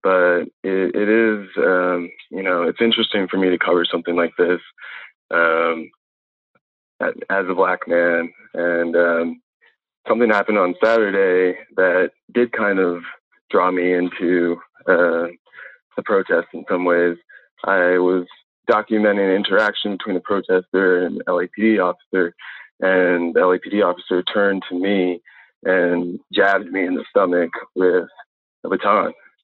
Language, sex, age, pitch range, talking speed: English, male, 20-39, 90-110 Hz, 140 wpm